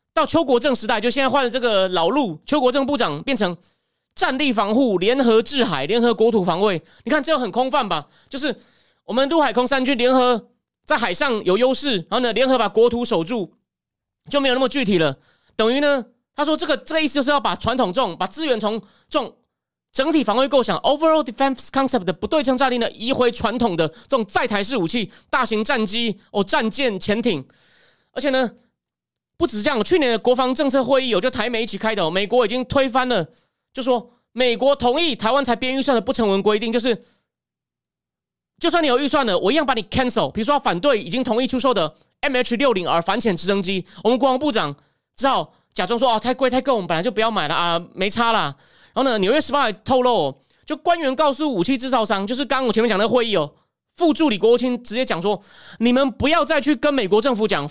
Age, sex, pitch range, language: 30-49, male, 215-270 Hz, Chinese